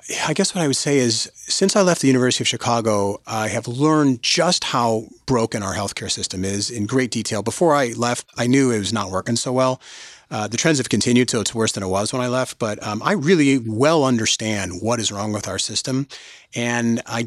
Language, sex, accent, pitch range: English, male, American, 110-135 Hz